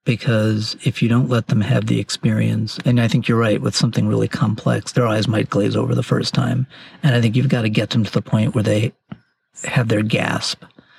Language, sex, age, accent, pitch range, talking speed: English, male, 40-59, American, 110-130 Hz, 230 wpm